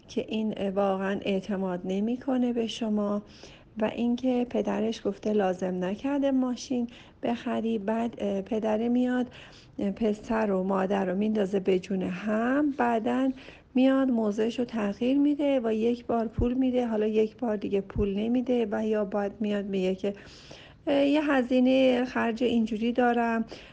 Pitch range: 195-245 Hz